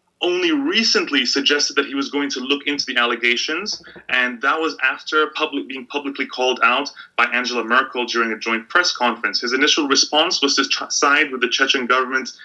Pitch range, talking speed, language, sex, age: 125-155 Hz, 185 wpm, English, male, 20-39